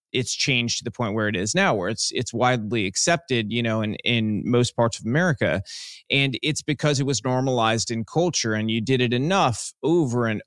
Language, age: English, 30-49